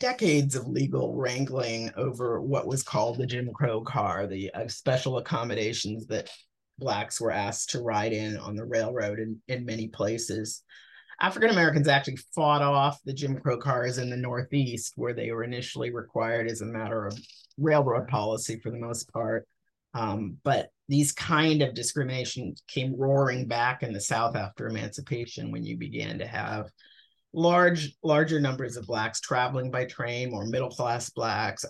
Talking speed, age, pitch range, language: 165 wpm, 30-49, 110-140 Hz, English